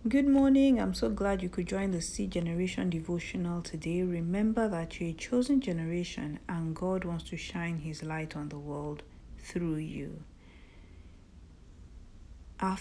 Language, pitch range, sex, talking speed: English, 145-200 Hz, female, 150 wpm